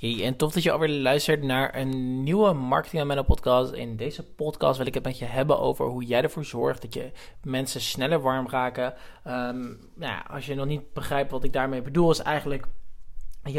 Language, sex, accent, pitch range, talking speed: Dutch, male, Dutch, 125-150 Hz, 210 wpm